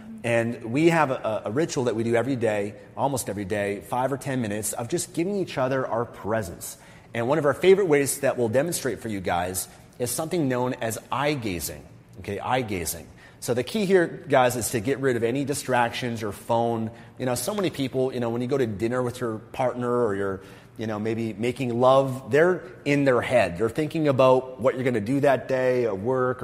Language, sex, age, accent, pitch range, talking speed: English, male, 30-49, American, 115-140 Hz, 220 wpm